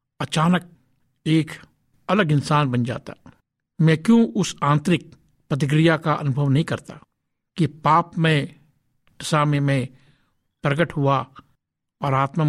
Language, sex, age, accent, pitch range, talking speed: Hindi, male, 60-79, native, 140-165 Hz, 115 wpm